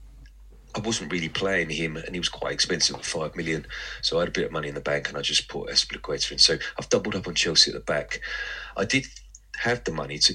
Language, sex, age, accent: English, male, 30-49, British